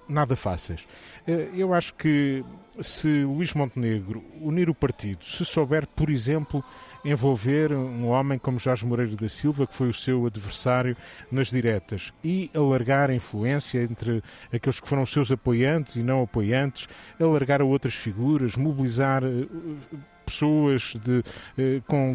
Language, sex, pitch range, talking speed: Portuguese, male, 120-140 Hz, 135 wpm